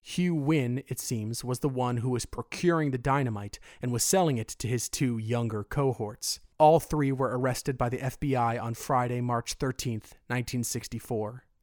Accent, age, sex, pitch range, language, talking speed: American, 30-49, male, 115-145 Hz, English, 170 wpm